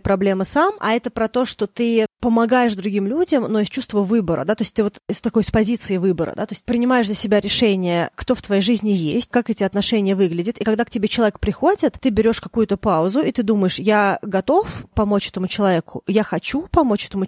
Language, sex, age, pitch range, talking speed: Russian, female, 30-49, 185-220 Hz, 225 wpm